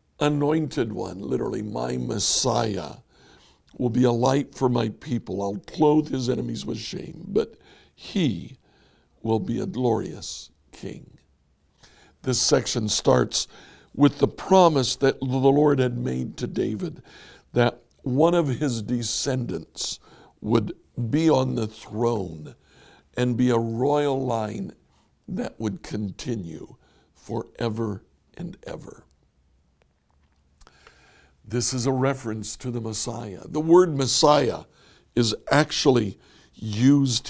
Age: 60-79